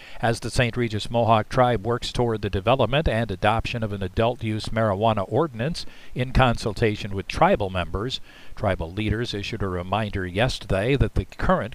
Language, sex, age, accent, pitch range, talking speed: English, male, 50-69, American, 100-120 Hz, 165 wpm